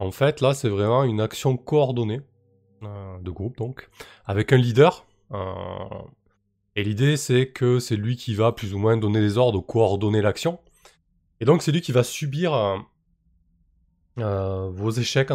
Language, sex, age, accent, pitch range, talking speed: French, male, 20-39, French, 95-120 Hz, 170 wpm